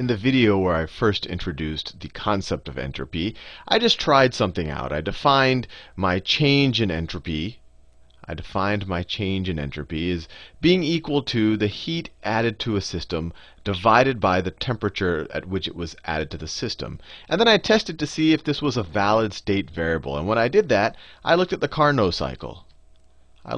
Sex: male